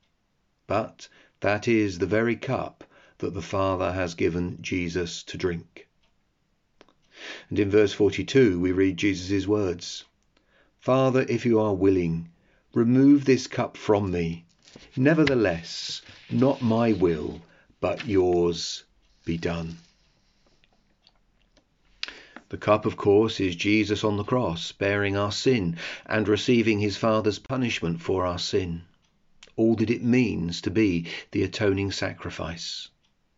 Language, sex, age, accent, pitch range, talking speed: English, male, 40-59, British, 90-115 Hz, 125 wpm